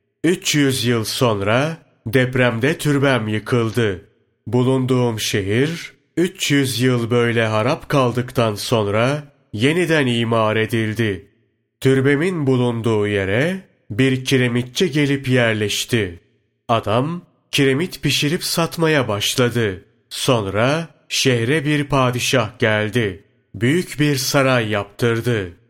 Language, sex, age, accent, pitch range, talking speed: Turkish, male, 30-49, native, 110-140 Hz, 90 wpm